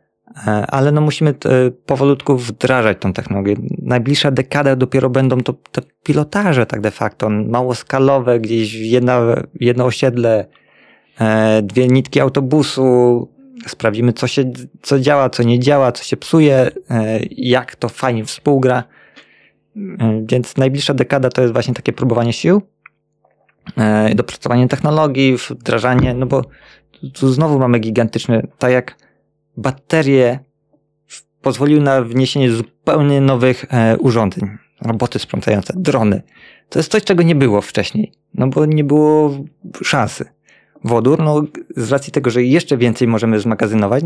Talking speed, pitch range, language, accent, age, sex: 125 wpm, 115-145 Hz, Polish, native, 20-39, male